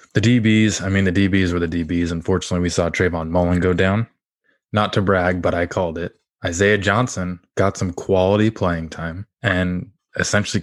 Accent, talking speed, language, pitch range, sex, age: American, 180 wpm, English, 85-100 Hz, male, 20-39